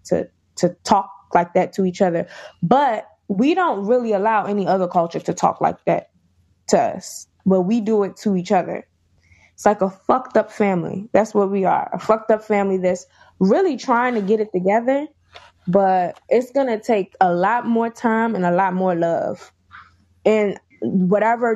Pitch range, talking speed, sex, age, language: 180-210 Hz, 185 wpm, female, 20-39, English